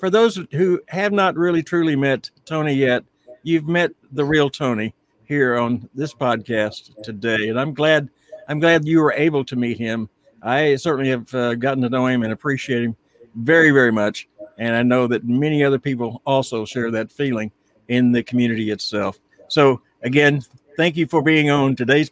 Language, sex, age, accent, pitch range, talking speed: English, male, 60-79, American, 125-170 Hz, 185 wpm